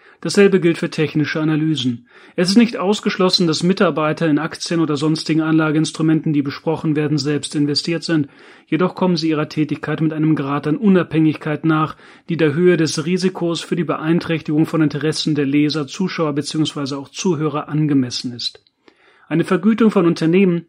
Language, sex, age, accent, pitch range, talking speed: German, male, 30-49, German, 150-175 Hz, 160 wpm